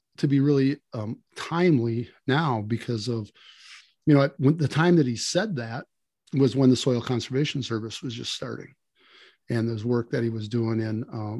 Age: 50-69